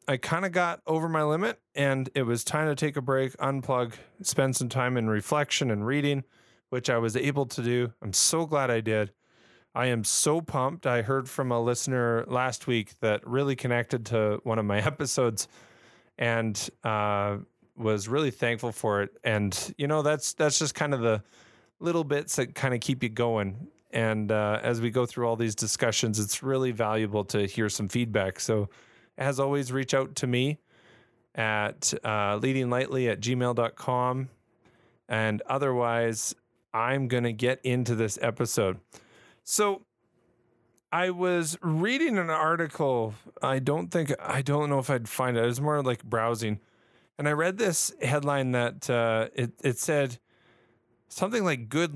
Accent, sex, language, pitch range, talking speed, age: American, male, English, 115-145 Hz, 170 wpm, 20-39